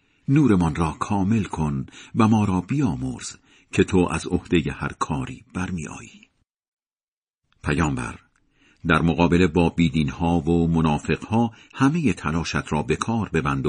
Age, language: 50-69, Persian